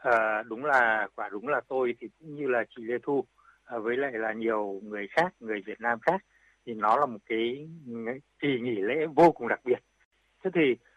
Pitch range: 120-155 Hz